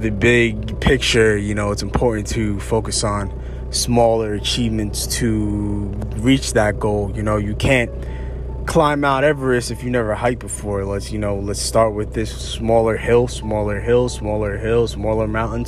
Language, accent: English, American